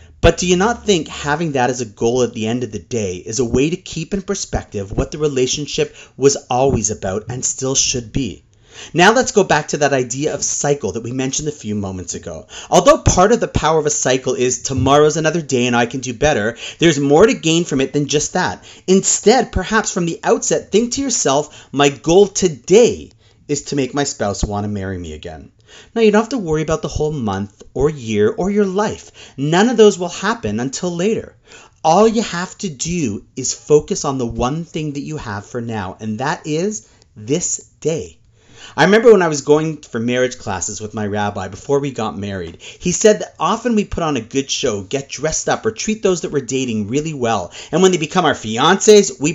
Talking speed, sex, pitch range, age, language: 225 wpm, male, 115-175 Hz, 30-49, English